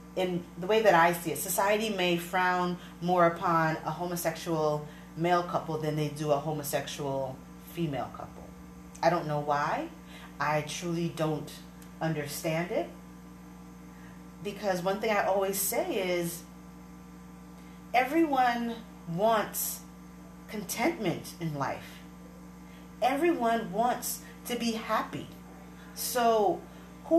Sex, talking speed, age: female, 115 wpm, 30-49